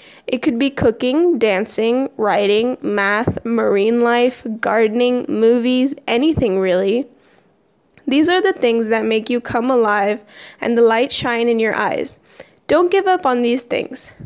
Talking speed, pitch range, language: 145 wpm, 225-285 Hz, English